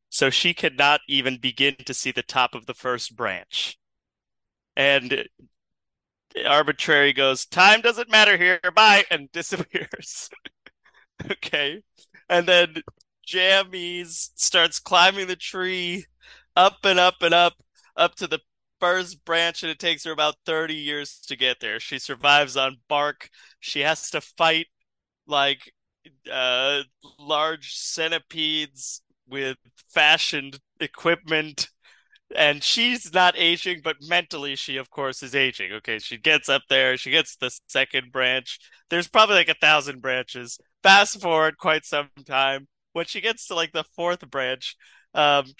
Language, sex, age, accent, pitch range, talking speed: English, male, 30-49, American, 135-175 Hz, 140 wpm